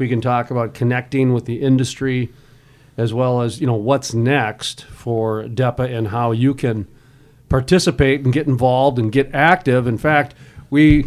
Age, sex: 40-59, male